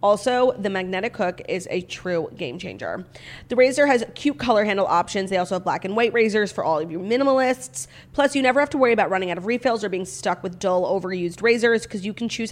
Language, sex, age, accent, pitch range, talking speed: English, female, 30-49, American, 185-255 Hz, 240 wpm